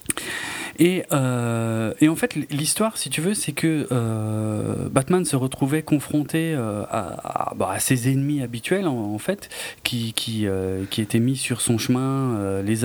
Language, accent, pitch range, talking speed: French, French, 115-150 Hz, 180 wpm